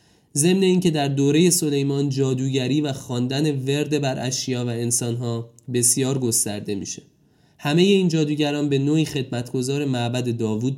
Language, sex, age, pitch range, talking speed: Persian, male, 20-39, 125-155 Hz, 135 wpm